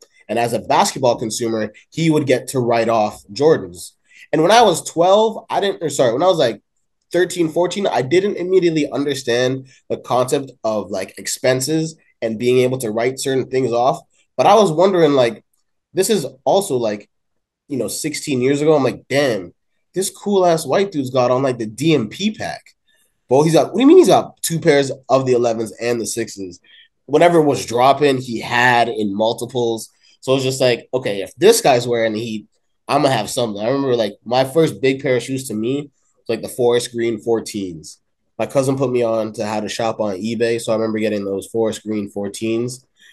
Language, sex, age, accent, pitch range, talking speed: English, male, 20-39, American, 110-135 Hz, 205 wpm